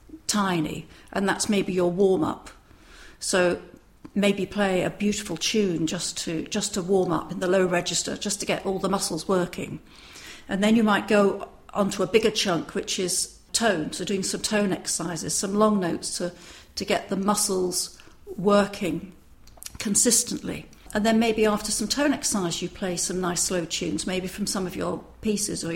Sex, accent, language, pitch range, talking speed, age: female, British, English, 185-215 Hz, 175 wpm, 50-69